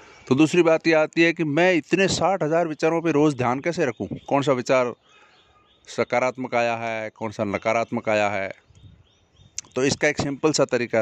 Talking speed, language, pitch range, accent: 185 wpm, Hindi, 105-150 Hz, native